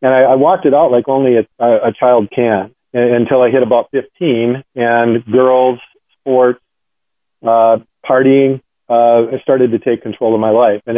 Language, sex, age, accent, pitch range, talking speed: English, male, 40-59, American, 115-125 Hz, 175 wpm